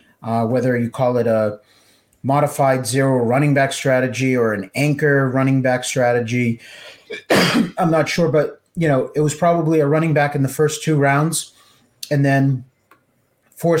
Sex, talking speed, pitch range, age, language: male, 160 wpm, 120-145 Hz, 30-49, English